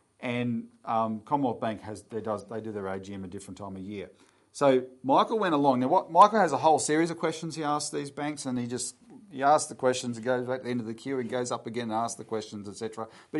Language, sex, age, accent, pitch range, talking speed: English, male, 40-59, Australian, 115-145 Hz, 265 wpm